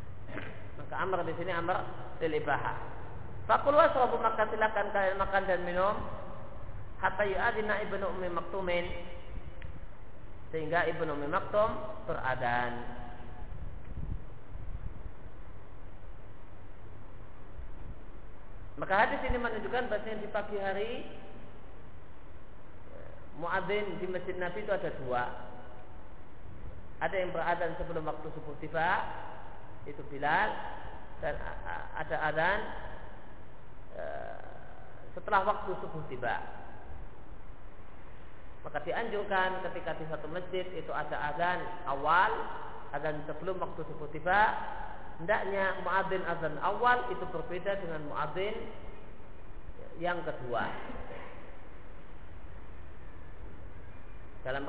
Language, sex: Indonesian, male